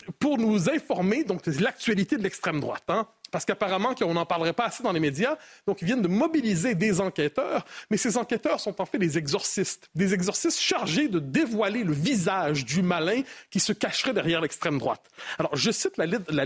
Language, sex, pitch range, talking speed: French, male, 170-240 Hz, 190 wpm